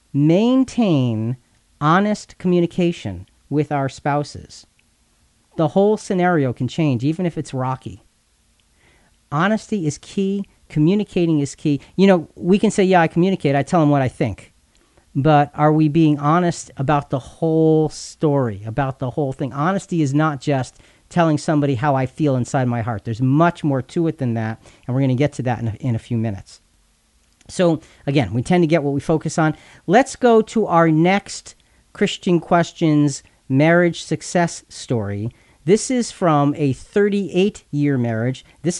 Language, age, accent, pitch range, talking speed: English, 40-59, American, 130-170 Hz, 160 wpm